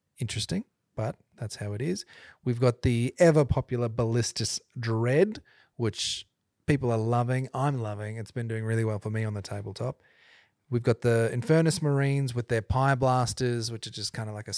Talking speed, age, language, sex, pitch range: 185 wpm, 30-49, English, male, 110-130 Hz